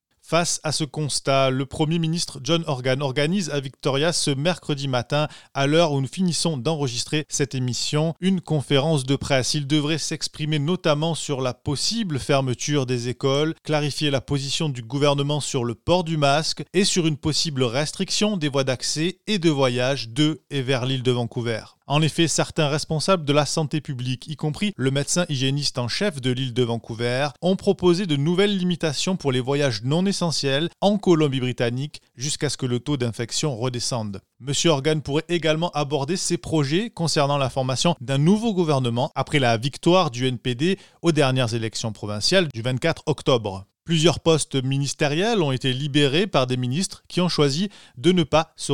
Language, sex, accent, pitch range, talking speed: French, male, French, 130-160 Hz, 175 wpm